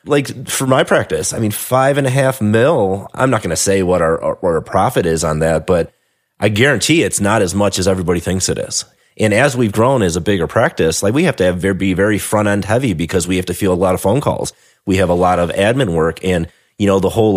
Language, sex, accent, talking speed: English, male, American, 265 wpm